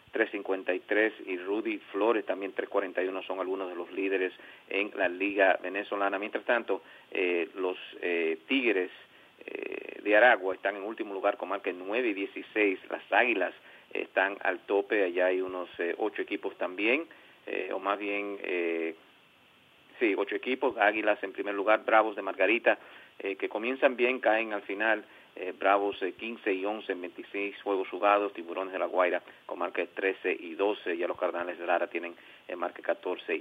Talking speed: 170 wpm